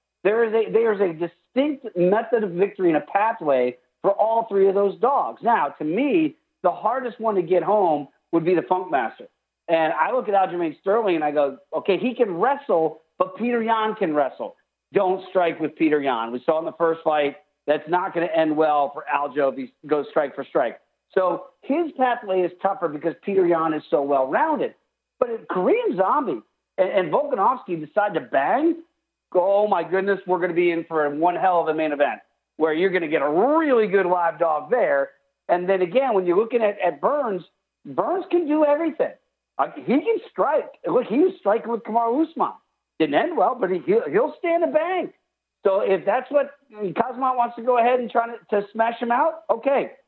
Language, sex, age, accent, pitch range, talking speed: English, male, 40-59, American, 165-255 Hz, 210 wpm